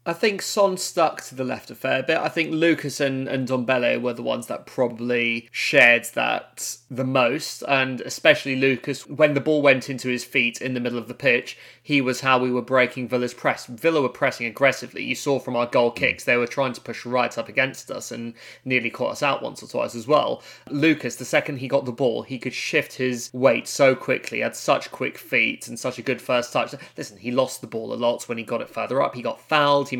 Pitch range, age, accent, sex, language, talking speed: 120-135 Hz, 20-39, British, male, English, 240 wpm